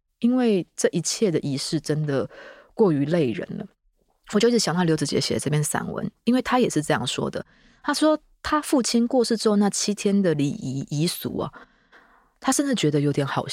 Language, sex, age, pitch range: Chinese, female, 20-39, 140-190 Hz